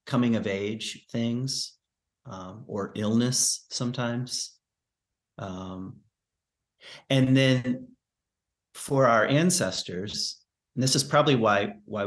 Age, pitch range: 30-49, 100-130 Hz